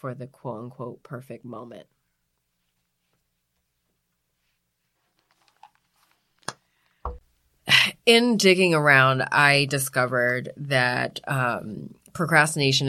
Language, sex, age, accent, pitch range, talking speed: English, female, 30-49, American, 130-150 Hz, 65 wpm